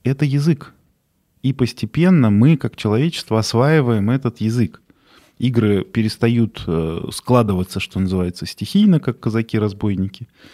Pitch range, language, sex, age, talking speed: 105-140 Hz, Russian, male, 20-39, 105 wpm